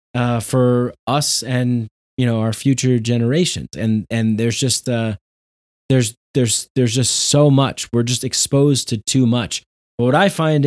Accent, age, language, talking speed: American, 20-39, English, 175 wpm